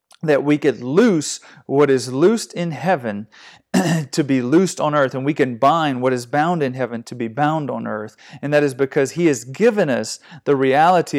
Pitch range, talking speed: 130-160 Hz, 205 wpm